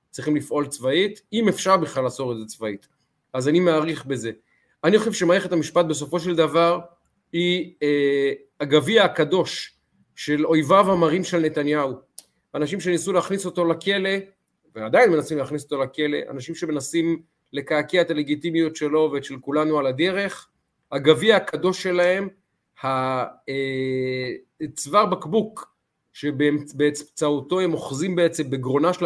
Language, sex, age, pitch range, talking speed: Hebrew, male, 30-49, 140-180 Hz, 125 wpm